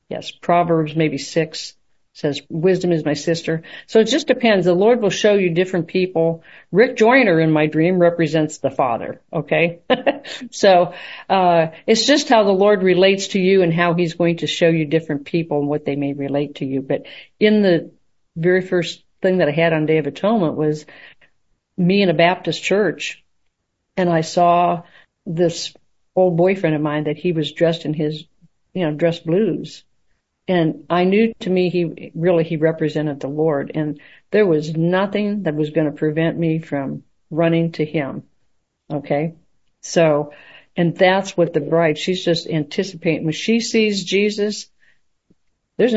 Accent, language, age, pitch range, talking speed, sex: American, English, 50-69, 155-185 Hz, 170 wpm, female